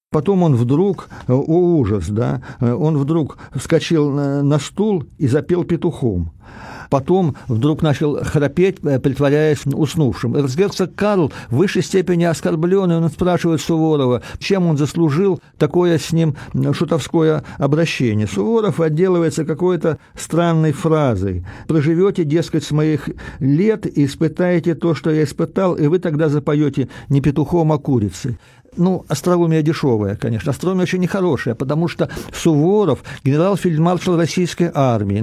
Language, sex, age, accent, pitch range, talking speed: Russian, male, 50-69, native, 140-175 Hz, 125 wpm